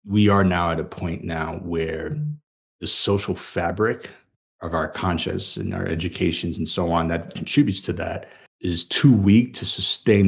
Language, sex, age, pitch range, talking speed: English, male, 30-49, 90-110 Hz, 170 wpm